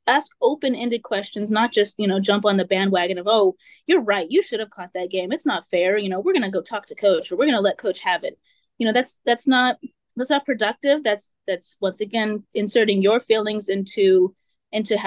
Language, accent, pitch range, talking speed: English, American, 190-235 Hz, 235 wpm